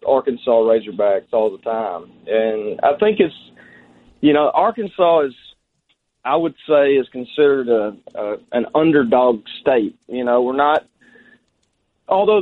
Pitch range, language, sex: 115-150 Hz, English, male